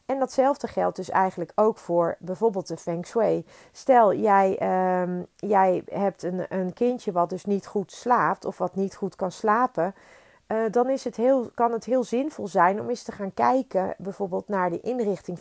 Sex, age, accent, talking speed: female, 40-59, Dutch, 190 wpm